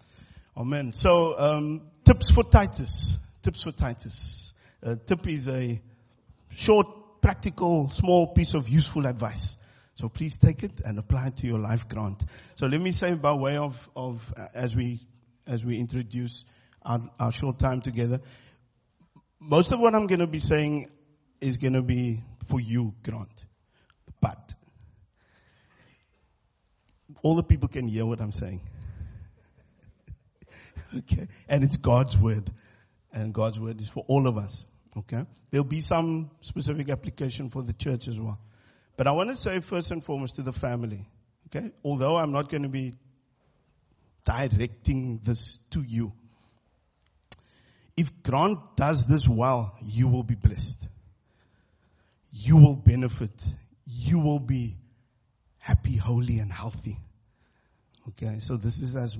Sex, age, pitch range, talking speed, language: male, 50-69, 110-140 Hz, 145 wpm, English